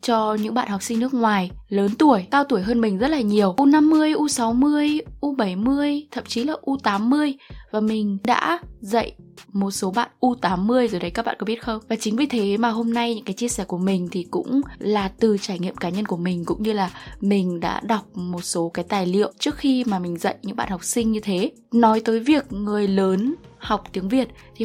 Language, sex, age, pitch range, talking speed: Vietnamese, female, 10-29, 190-245 Hz, 225 wpm